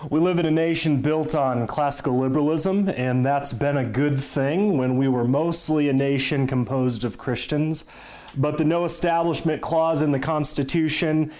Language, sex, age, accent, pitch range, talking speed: English, male, 30-49, American, 120-145 Hz, 170 wpm